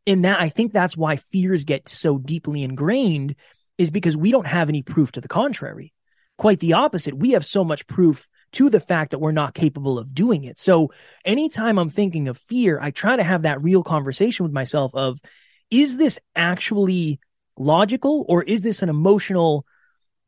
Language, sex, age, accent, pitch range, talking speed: English, male, 20-39, American, 150-210 Hz, 185 wpm